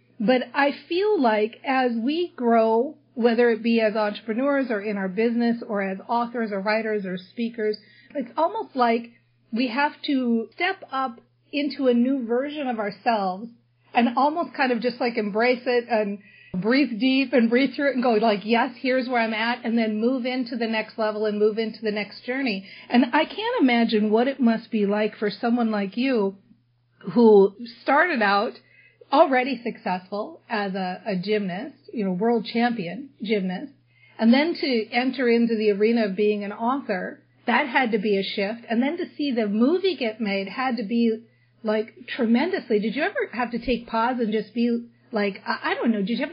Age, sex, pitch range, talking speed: 40-59, female, 215-260 Hz, 190 wpm